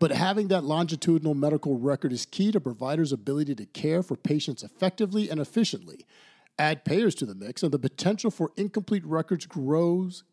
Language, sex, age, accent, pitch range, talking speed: English, male, 50-69, American, 145-195 Hz, 175 wpm